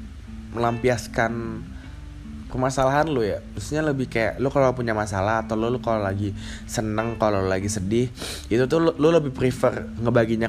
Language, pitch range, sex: Indonesian, 90-110 Hz, male